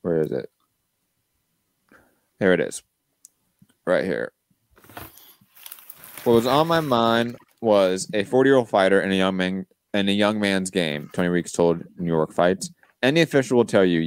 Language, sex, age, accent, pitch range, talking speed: English, male, 20-39, American, 90-110 Hz, 160 wpm